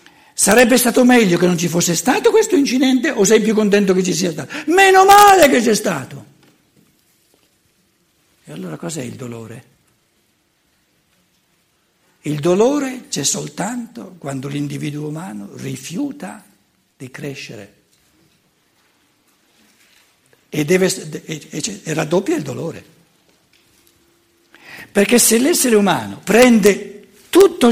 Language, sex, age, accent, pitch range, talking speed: Italian, male, 60-79, native, 160-235 Hz, 110 wpm